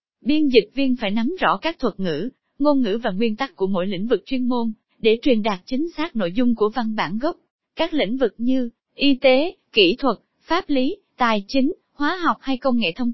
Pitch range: 215-285 Hz